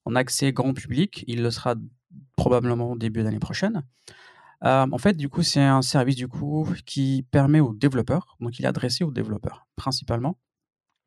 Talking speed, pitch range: 180 wpm, 125-150 Hz